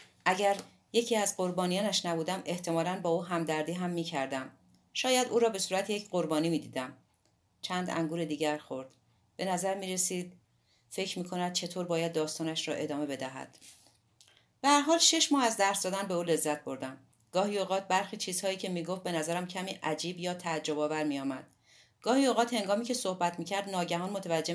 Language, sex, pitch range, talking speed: Persian, female, 155-195 Hz, 175 wpm